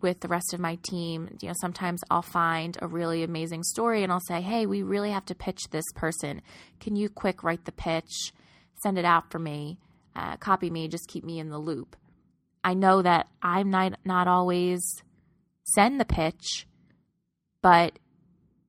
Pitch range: 165-185 Hz